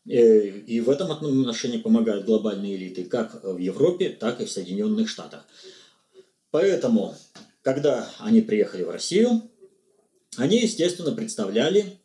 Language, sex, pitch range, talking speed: Russian, male, 130-215 Hz, 120 wpm